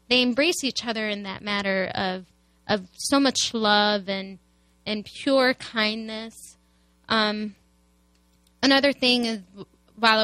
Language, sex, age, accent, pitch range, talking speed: English, female, 10-29, American, 180-245 Hz, 125 wpm